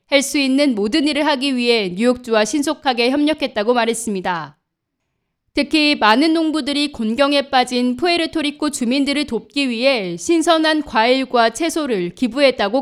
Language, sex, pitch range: Korean, female, 230-305 Hz